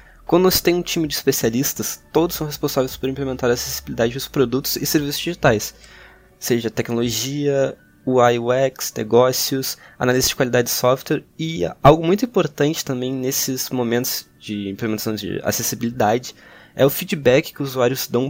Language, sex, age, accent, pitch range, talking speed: Portuguese, male, 20-39, Brazilian, 120-155 Hz, 155 wpm